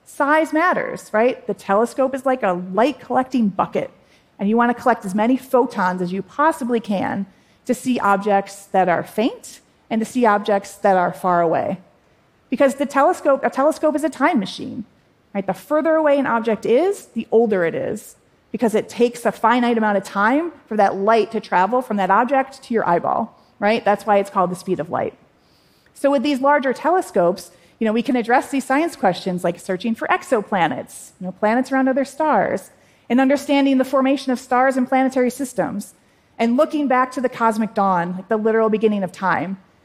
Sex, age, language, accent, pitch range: female, 30-49, Korean, American, 200-265 Hz